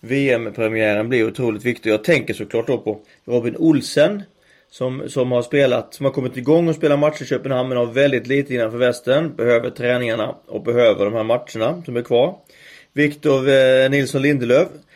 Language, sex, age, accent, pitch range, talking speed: Swedish, male, 30-49, native, 120-145 Hz, 175 wpm